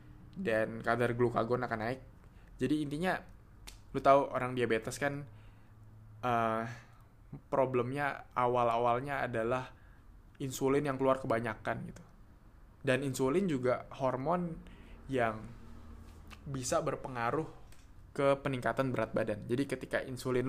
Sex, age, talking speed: male, 20-39, 105 wpm